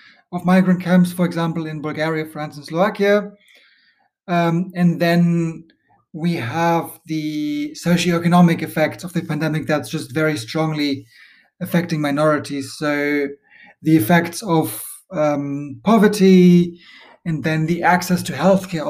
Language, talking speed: English, 125 wpm